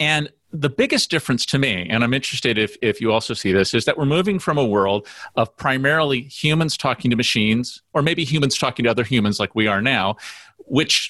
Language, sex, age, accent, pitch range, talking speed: English, male, 40-59, American, 110-145 Hz, 215 wpm